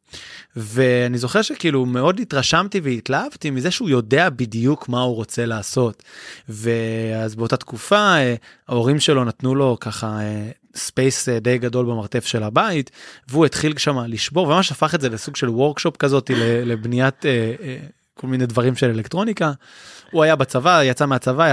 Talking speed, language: 140 wpm, Hebrew